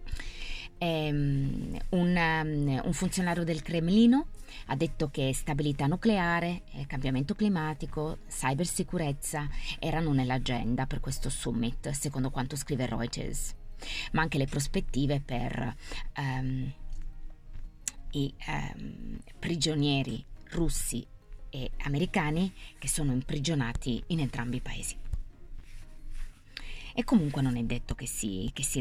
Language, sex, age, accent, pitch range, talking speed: Italian, female, 20-39, native, 120-150 Hz, 110 wpm